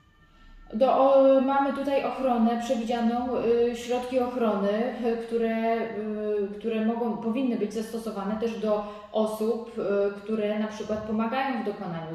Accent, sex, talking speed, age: native, female, 135 wpm, 30-49